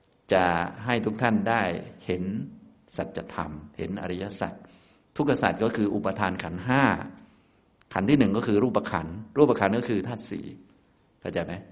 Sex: male